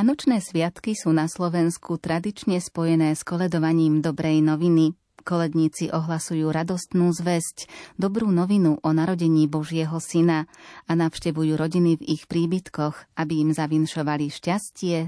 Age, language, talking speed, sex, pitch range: 30-49, Slovak, 125 wpm, female, 150-170 Hz